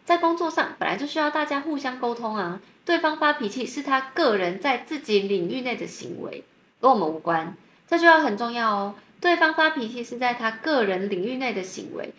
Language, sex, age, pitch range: Chinese, female, 20-39, 200-305 Hz